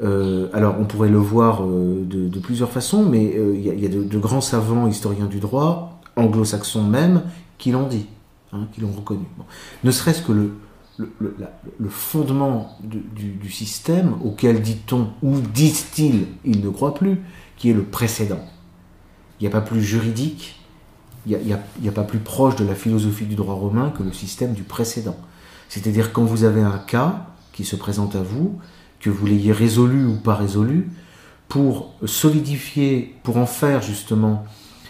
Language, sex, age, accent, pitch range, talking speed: French, male, 40-59, French, 105-140 Hz, 185 wpm